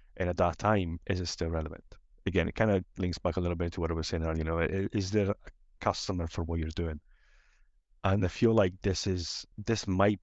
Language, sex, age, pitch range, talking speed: English, male, 30-49, 85-95 Hz, 240 wpm